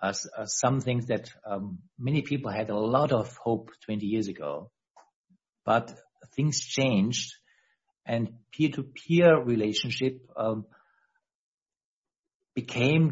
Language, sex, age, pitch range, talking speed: English, male, 60-79, 110-140 Hz, 105 wpm